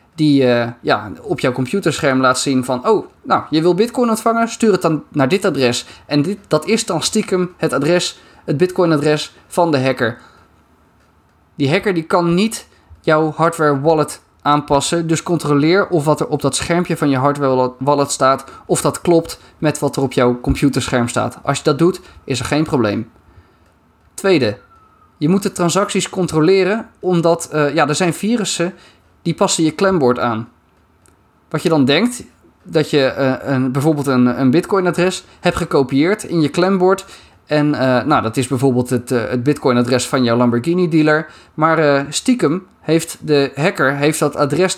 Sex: male